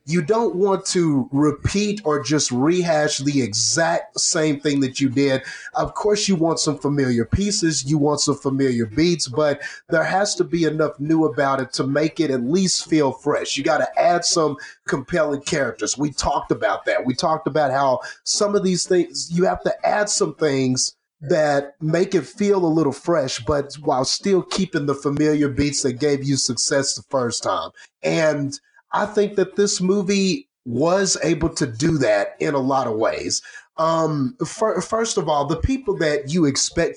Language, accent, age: English, American, 30-49